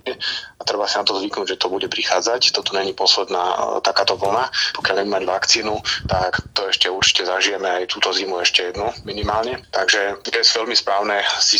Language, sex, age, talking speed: Slovak, male, 30-49, 180 wpm